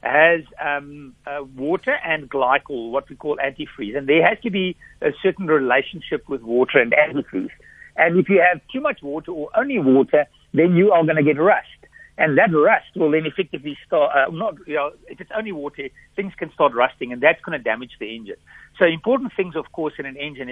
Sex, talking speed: male, 215 wpm